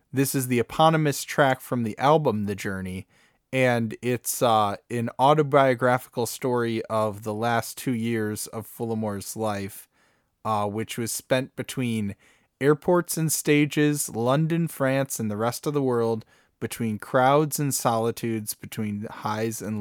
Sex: male